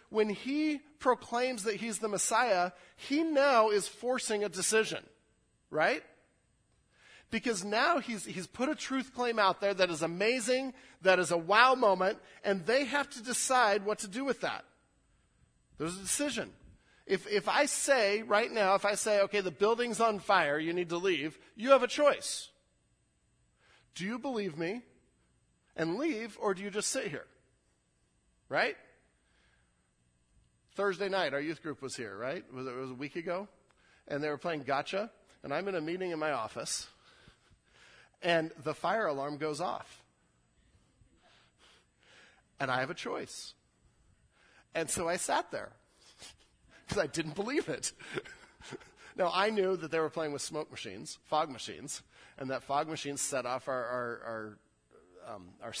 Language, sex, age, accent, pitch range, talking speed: English, male, 40-59, American, 150-230 Hz, 160 wpm